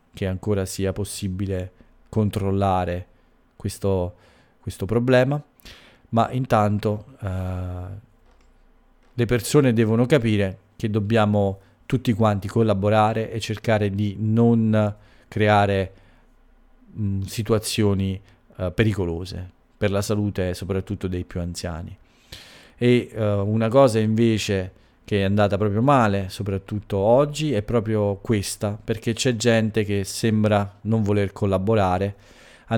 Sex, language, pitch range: male, English, 100-115 Hz